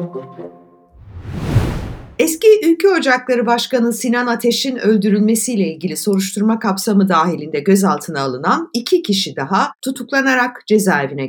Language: Turkish